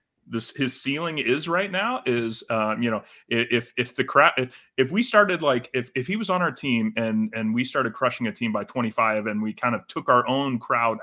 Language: English